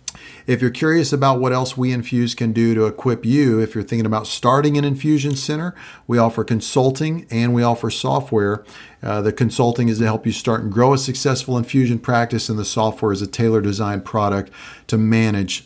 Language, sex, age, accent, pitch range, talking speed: English, male, 40-59, American, 110-130 Hz, 195 wpm